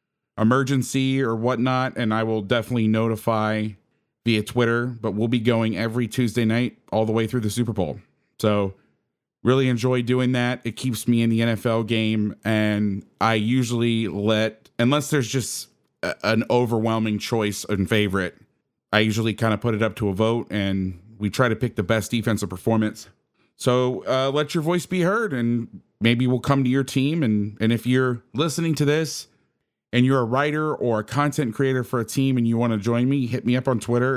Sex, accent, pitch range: male, American, 105-125 Hz